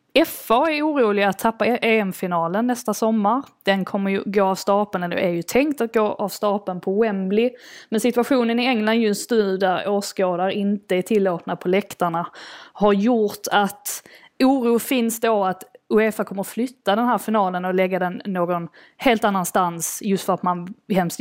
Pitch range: 190-235 Hz